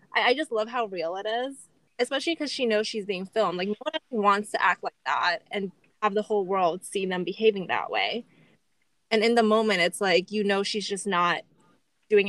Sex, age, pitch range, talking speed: female, 20-39, 185-225 Hz, 215 wpm